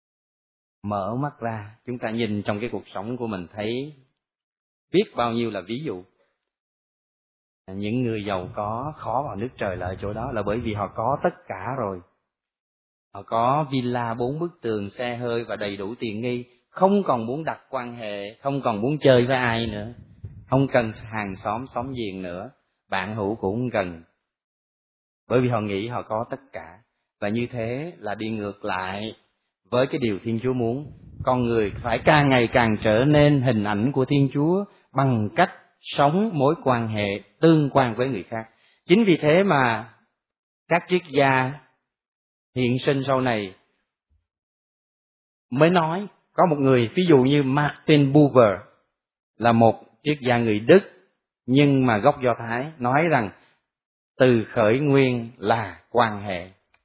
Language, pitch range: Vietnamese, 105-135 Hz